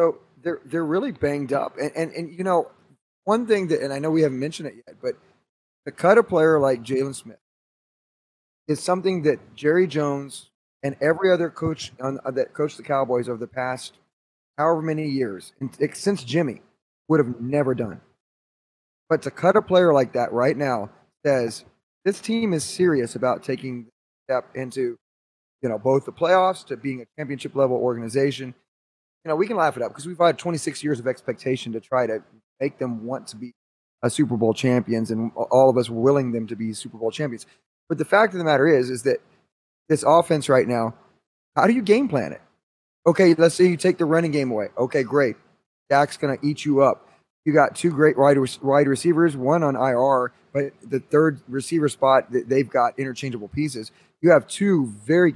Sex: male